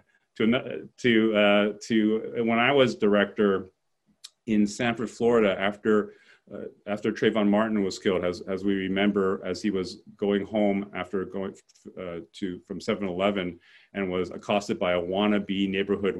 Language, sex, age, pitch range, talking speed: English, male, 40-59, 95-110 Hz, 155 wpm